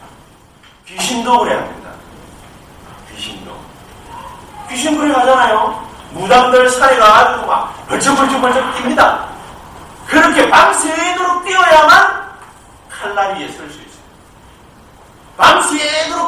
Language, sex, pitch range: Korean, male, 260-330 Hz